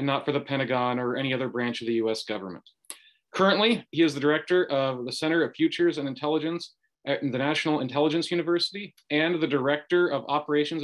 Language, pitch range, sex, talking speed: English, 125-150 Hz, male, 195 wpm